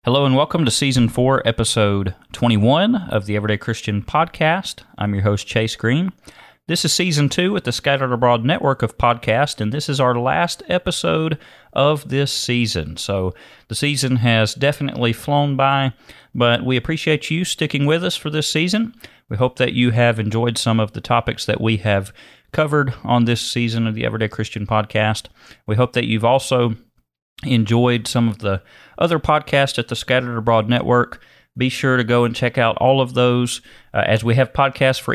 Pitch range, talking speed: 110-135 Hz, 185 wpm